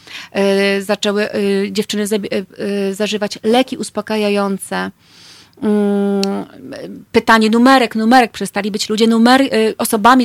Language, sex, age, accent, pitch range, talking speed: Polish, female, 30-49, native, 210-245 Hz, 70 wpm